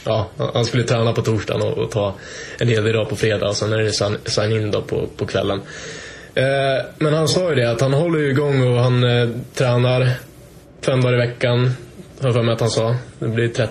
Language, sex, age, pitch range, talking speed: Swedish, male, 20-39, 110-135 Hz, 225 wpm